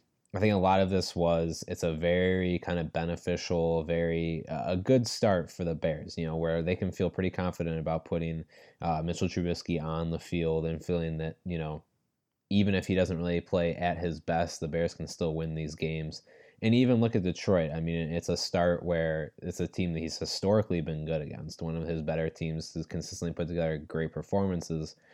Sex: male